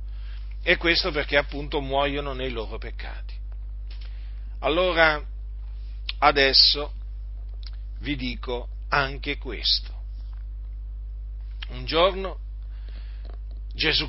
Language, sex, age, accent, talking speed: Italian, male, 40-59, native, 70 wpm